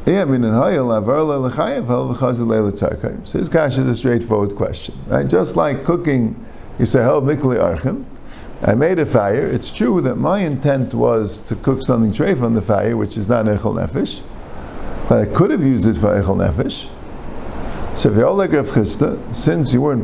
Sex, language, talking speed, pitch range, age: male, English, 140 wpm, 110-165 Hz, 50-69